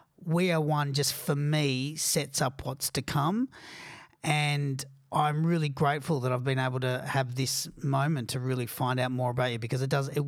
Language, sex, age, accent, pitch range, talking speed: English, male, 40-59, Australian, 125-150 Hz, 200 wpm